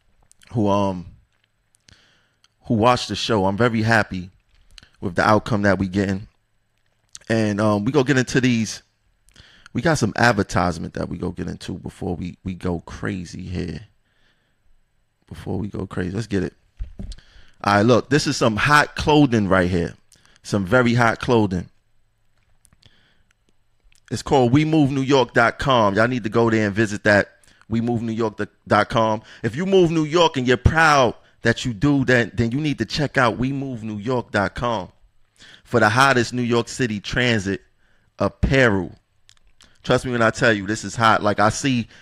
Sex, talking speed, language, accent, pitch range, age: male, 165 wpm, English, American, 100-120 Hz, 30-49